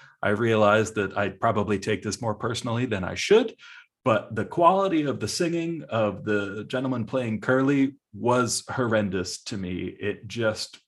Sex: male